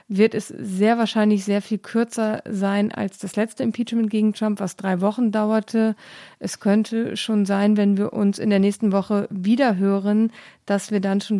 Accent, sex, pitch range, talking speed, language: German, female, 200-225 Hz, 180 wpm, German